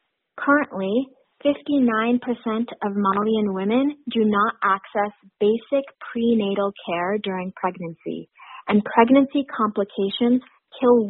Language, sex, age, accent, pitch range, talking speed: English, female, 30-49, American, 195-235 Hz, 90 wpm